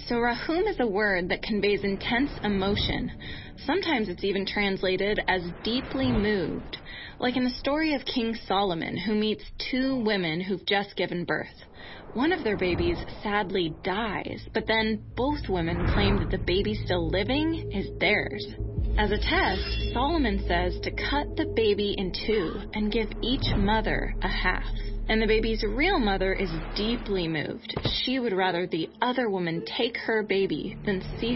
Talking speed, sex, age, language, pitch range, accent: 165 wpm, female, 20-39, English, 185-235 Hz, American